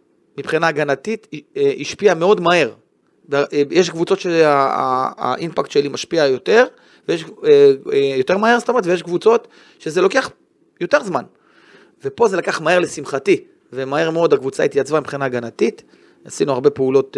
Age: 30-49